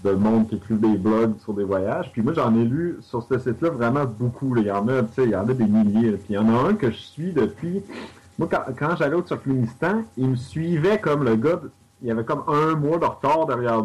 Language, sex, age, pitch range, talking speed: French, male, 30-49, 110-135 Hz, 275 wpm